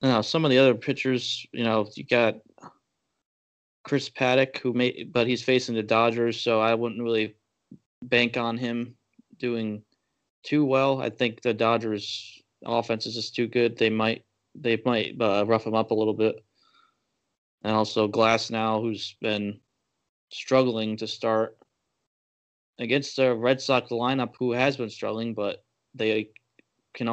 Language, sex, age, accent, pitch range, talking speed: English, male, 20-39, American, 110-120 Hz, 155 wpm